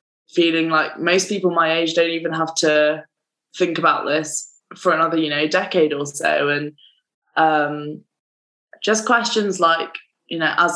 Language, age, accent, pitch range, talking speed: English, 20-39, British, 150-175 Hz, 155 wpm